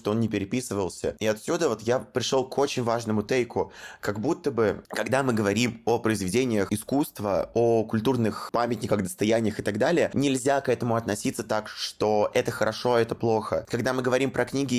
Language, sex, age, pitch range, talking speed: Russian, male, 20-39, 105-120 Hz, 185 wpm